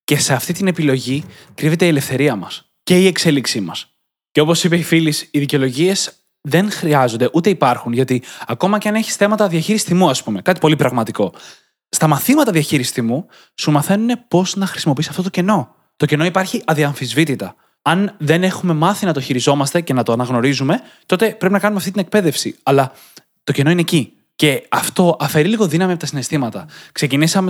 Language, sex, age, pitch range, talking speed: Greek, male, 20-39, 135-180 Hz, 185 wpm